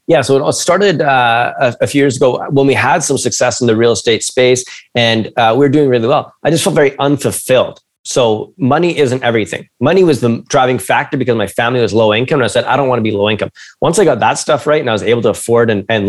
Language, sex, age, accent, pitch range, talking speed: English, male, 20-39, American, 115-135 Hz, 255 wpm